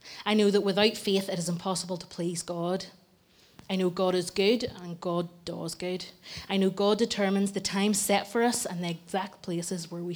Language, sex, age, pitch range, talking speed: English, female, 20-39, 175-200 Hz, 205 wpm